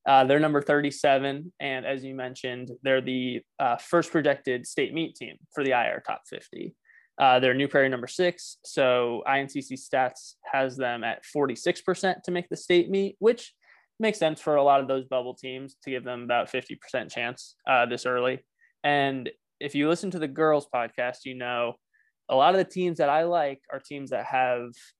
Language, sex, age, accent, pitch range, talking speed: English, male, 20-39, American, 130-165 Hz, 190 wpm